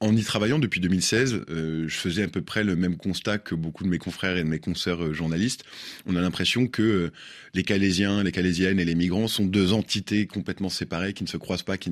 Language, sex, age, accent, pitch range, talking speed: French, male, 20-39, French, 85-100 Hz, 240 wpm